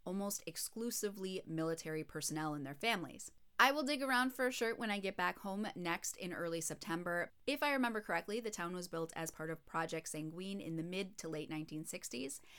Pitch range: 155-210 Hz